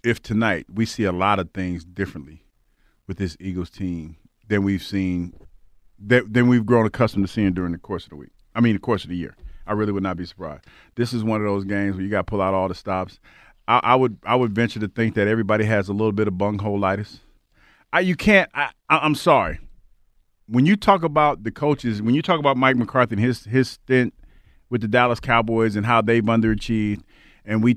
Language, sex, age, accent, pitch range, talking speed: English, male, 40-59, American, 105-120 Hz, 225 wpm